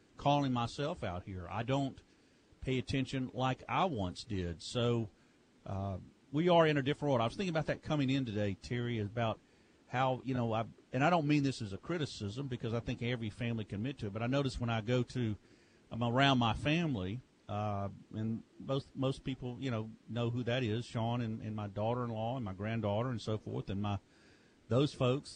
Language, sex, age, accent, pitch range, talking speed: English, male, 50-69, American, 115-140 Hz, 205 wpm